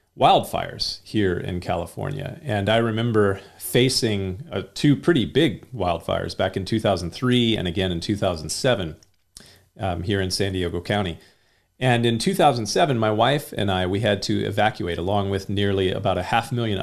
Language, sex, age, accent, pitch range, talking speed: English, male, 40-59, American, 95-120 Hz, 155 wpm